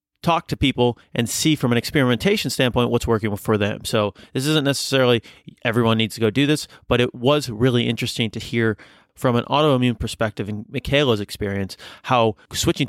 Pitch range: 105-125 Hz